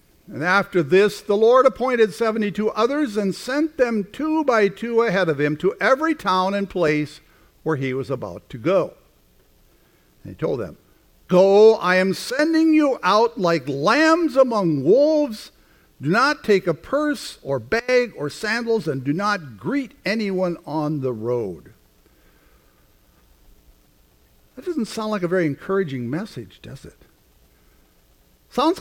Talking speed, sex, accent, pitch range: 145 wpm, male, American, 145-225 Hz